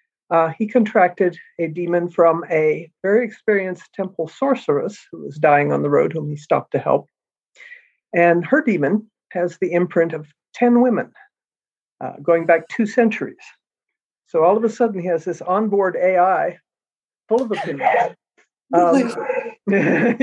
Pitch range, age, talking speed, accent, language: 165-230 Hz, 60-79, 155 wpm, American, English